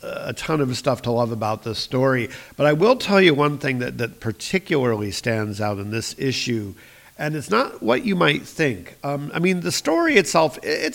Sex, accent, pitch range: male, American, 115-140 Hz